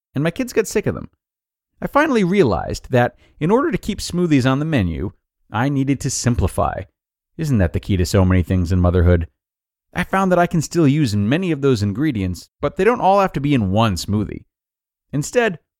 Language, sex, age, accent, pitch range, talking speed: English, male, 30-49, American, 95-140 Hz, 215 wpm